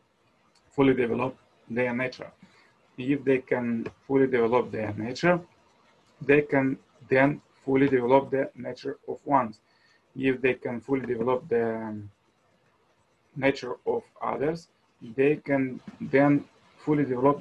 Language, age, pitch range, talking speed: English, 30-49, 120-140 Hz, 115 wpm